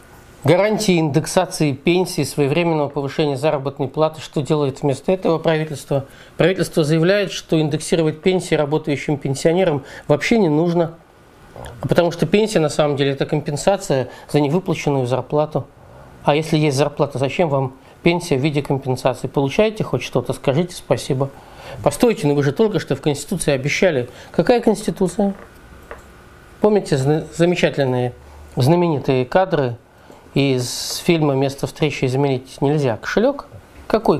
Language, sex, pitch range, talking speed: Russian, male, 140-180 Hz, 125 wpm